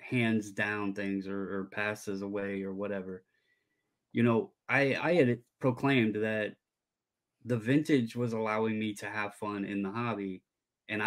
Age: 20-39